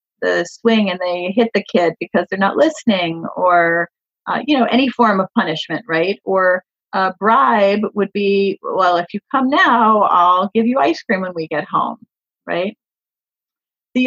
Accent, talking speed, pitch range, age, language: American, 175 wpm, 190-245 Hz, 40-59, English